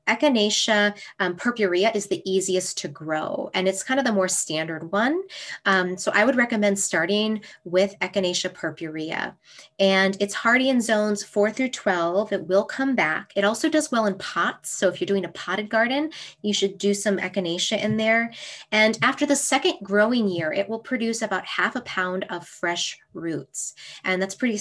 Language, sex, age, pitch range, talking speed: English, female, 20-39, 180-230 Hz, 185 wpm